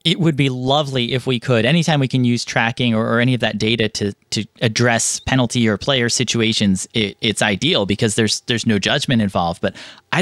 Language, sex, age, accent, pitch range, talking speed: English, male, 30-49, American, 115-140 Hz, 210 wpm